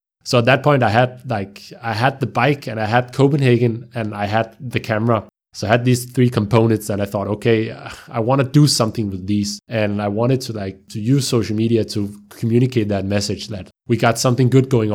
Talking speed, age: 225 wpm, 20-39